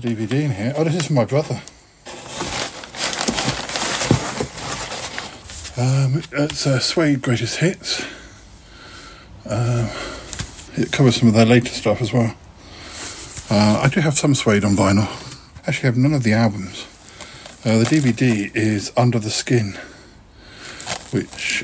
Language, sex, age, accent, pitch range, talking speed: English, male, 50-69, British, 110-140 Hz, 135 wpm